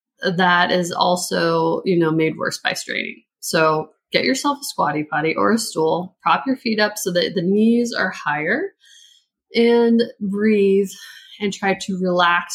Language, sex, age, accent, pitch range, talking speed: English, female, 20-39, American, 175-235 Hz, 165 wpm